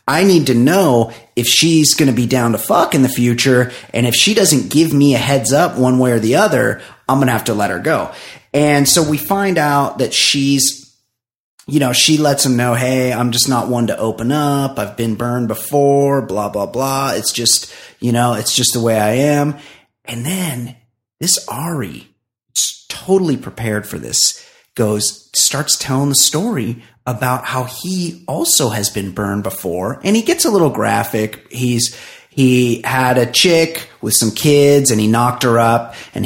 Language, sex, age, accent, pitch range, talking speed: English, male, 30-49, American, 115-140 Hz, 195 wpm